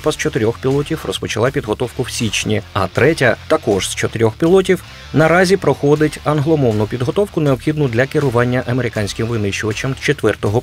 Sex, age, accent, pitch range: male, 30-49, native, 115-150 Hz